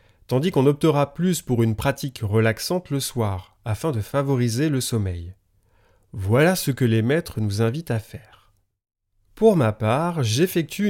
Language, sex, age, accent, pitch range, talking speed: French, male, 30-49, French, 105-145 Hz, 155 wpm